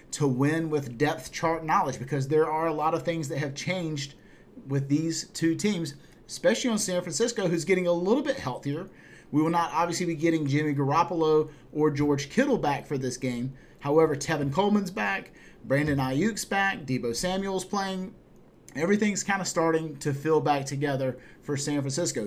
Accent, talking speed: American, 180 wpm